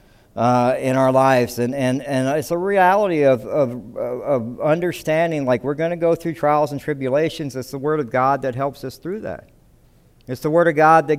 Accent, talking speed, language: American, 210 wpm, English